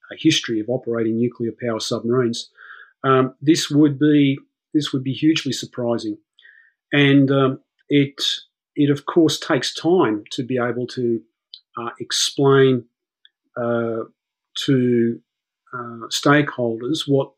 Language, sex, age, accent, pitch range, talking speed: English, male, 40-59, Australian, 120-140 Hz, 120 wpm